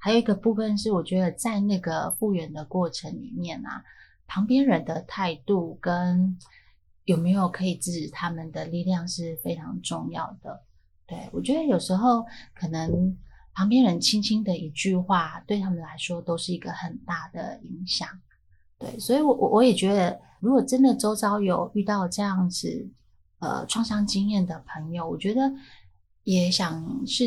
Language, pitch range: Chinese, 170-205 Hz